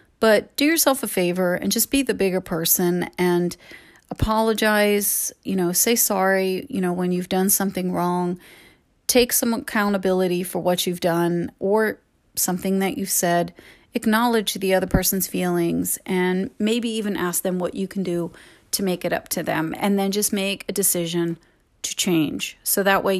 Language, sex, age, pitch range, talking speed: English, female, 30-49, 180-210 Hz, 175 wpm